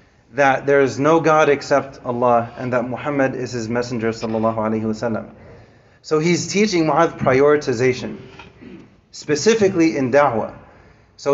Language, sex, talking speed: English, male, 115 wpm